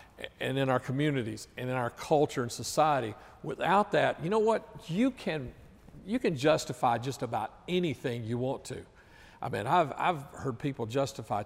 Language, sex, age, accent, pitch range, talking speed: English, male, 50-69, American, 130-155 Hz, 175 wpm